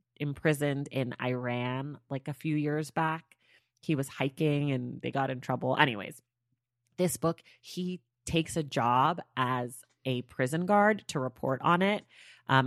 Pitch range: 130-170 Hz